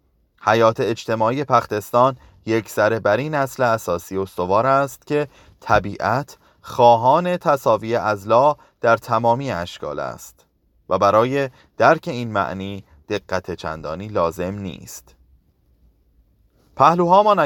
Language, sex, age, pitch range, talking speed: Persian, male, 30-49, 95-130 Hz, 105 wpm